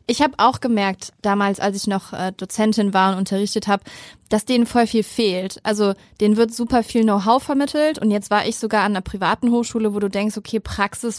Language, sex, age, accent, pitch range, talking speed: German, female, 20-39, German, 195-220 Hz, 215 wpm